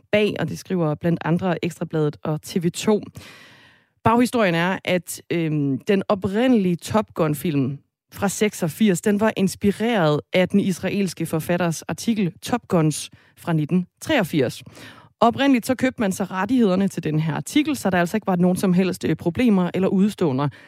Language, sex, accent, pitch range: Danish, female, native, 155-210 Hz